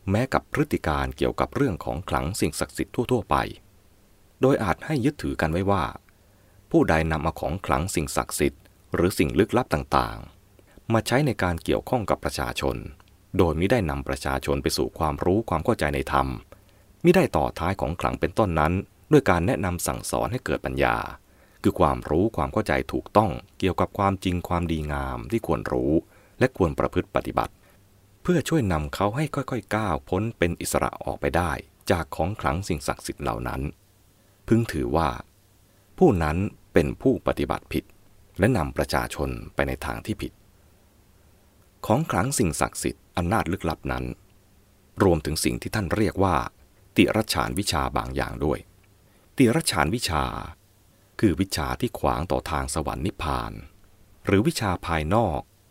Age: 20-39